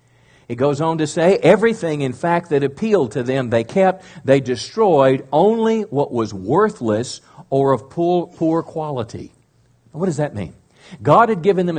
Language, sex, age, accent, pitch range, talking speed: English, male, 50-69, American, 130-170 Hz, 165 wpm